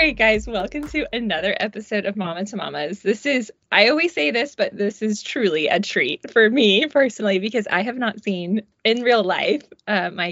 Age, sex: 20-39, female